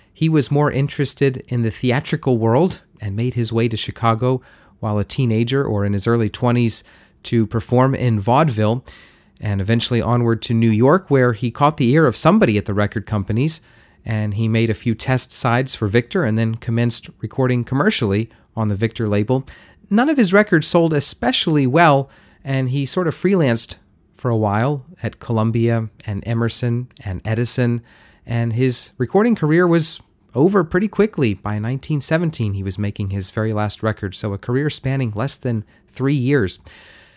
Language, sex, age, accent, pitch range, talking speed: English, male, 30-49, American, 110-140 Hz, 175 wpm